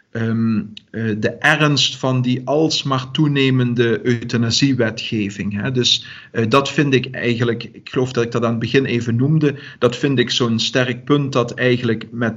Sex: male